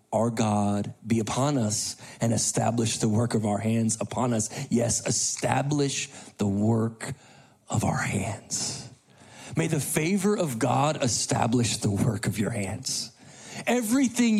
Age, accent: 40-59, American